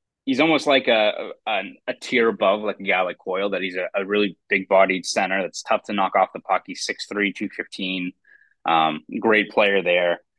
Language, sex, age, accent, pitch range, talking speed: English, male, 20-39, American, 95-115 Hz, 220 wpm